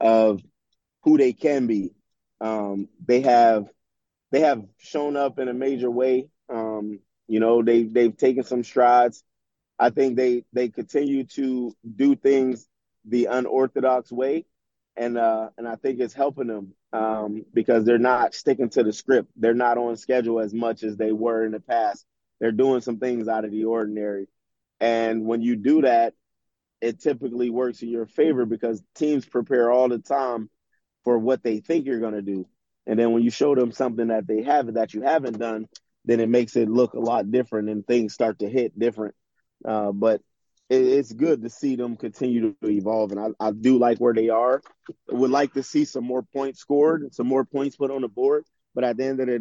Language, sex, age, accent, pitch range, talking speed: English, male, 30-49, American, 110-130 Hz, 200 wpm